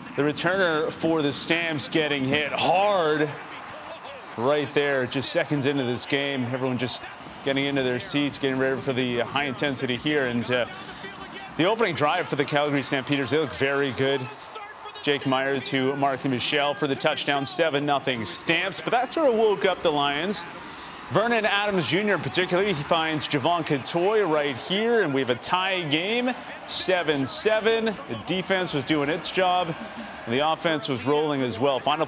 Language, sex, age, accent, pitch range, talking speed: English, male, 30-49, American, 135-165 Hz, 180 wpm